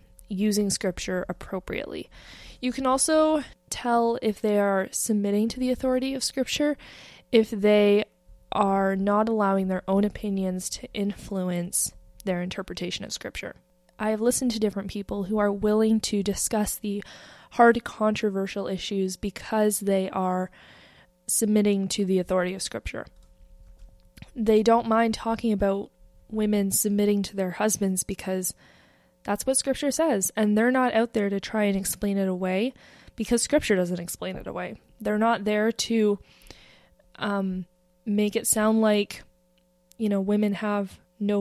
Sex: female